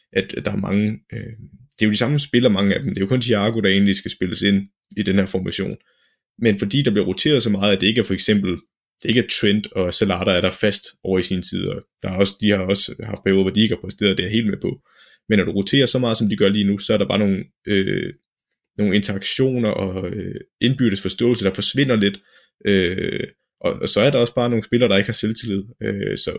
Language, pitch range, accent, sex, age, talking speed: Danish, 95-110 Hz, native, male, 20-39, 250 wpm